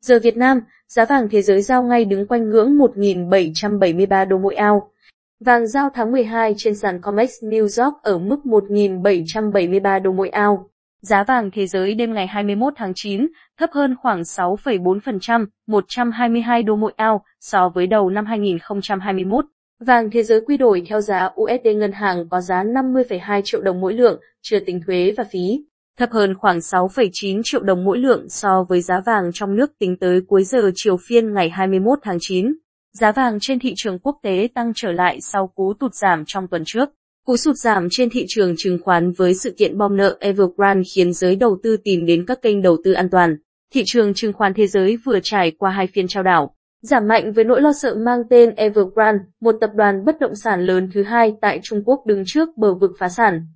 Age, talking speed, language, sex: 20-39, 205 wpm, Vietnamese, female